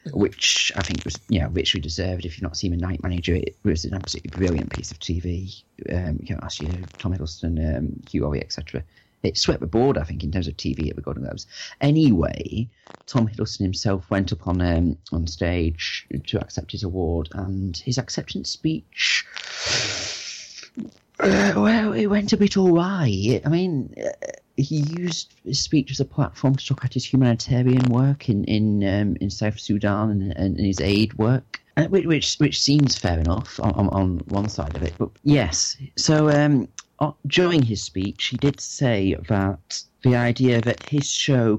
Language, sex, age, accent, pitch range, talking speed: English, male, 30-49, British, 90-130 Hz, 185 wpm